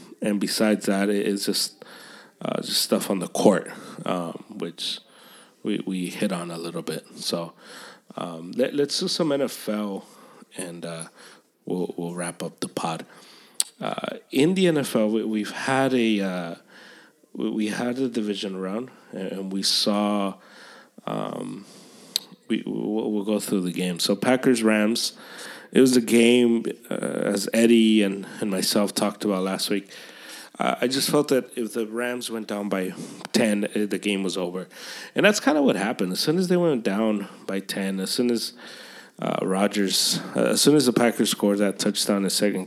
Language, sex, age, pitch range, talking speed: English, male, 30-49, 100-120 Hz, 175 wpm